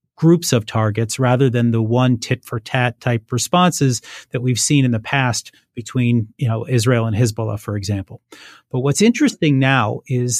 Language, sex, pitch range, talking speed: English, male, 120-145 Hz, 165 wpm